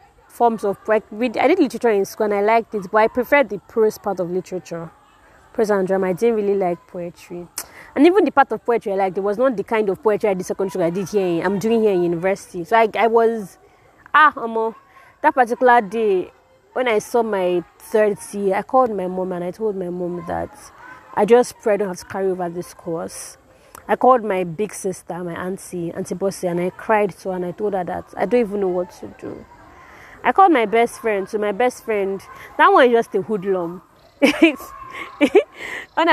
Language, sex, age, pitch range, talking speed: English, female, 20-39, 190-240 Hz, 220 wpm